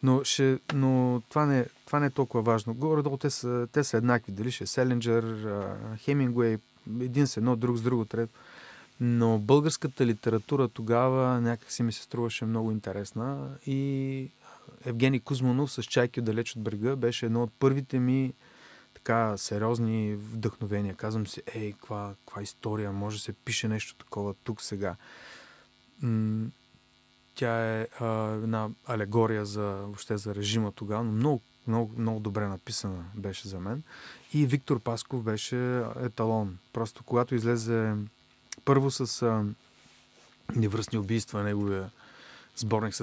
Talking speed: 135 wpm